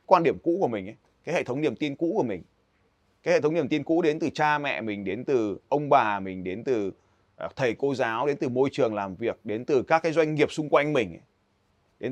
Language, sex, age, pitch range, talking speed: Vietnamese, male, 20-39, 110-150 Hz, 255 wpm